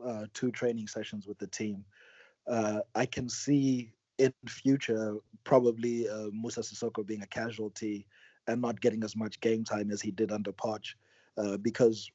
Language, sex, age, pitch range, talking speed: English, male, 30-49, 110-120 Hz, 170 wpm